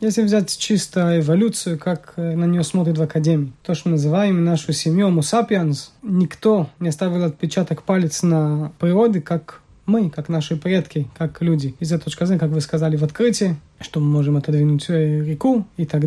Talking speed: 170 wpm